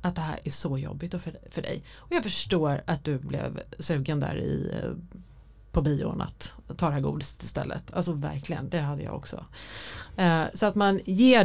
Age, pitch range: 30-49, 150-190 Hz